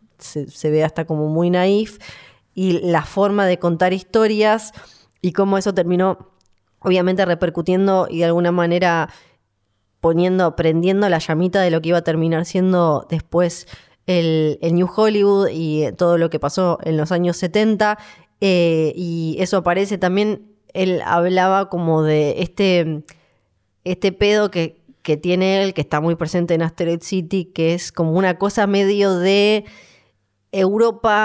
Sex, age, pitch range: female, 20-39, 160-190 Hz